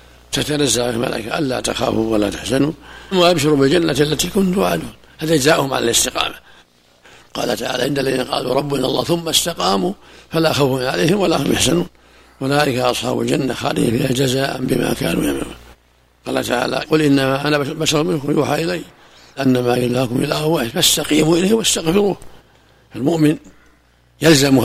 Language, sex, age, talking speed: Arabic, male, 60-79, 140 wpm